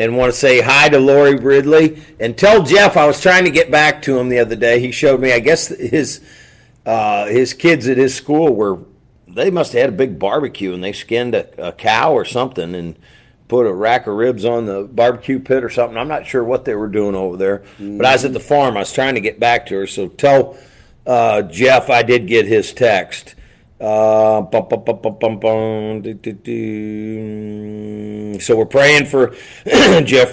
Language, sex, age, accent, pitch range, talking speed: English, male, 50-69, American, 110-130 Hz, 195 wpm